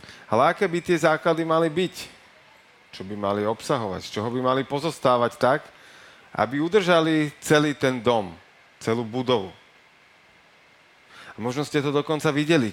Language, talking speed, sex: Slovak, 135 wpm, male